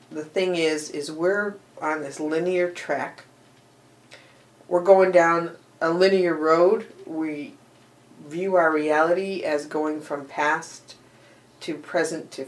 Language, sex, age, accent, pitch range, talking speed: English, female, 50-69, American, 140-165 Hz, 125 wpm